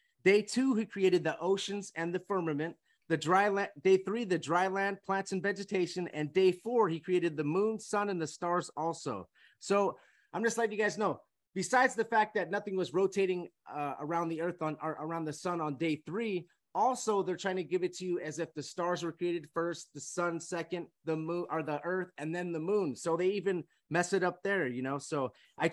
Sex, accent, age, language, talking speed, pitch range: male, American, 30-49, English, 225 wpm, 160-195 Hz